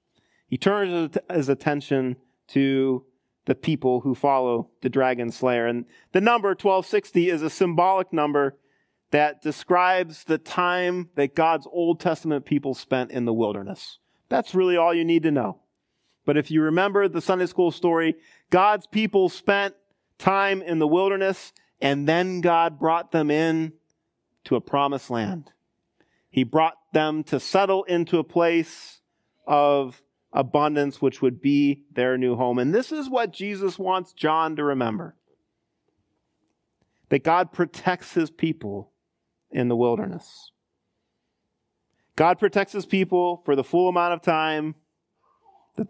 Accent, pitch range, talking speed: American, 140-180 Hz, 145 wpm